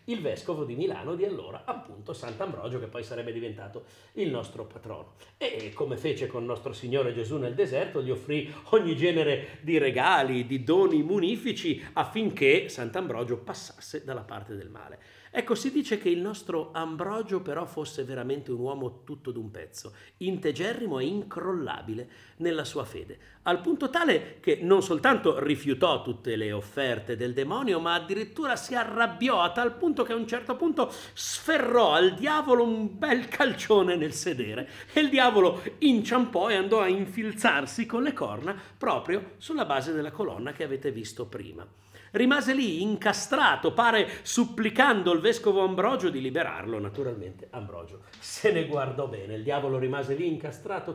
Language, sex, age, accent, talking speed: Italian, male, 40-59, native, 160 wpm